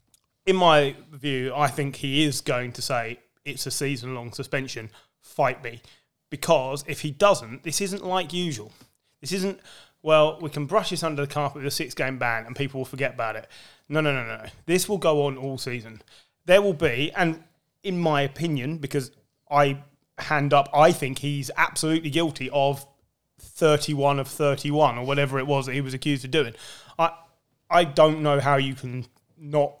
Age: 20-39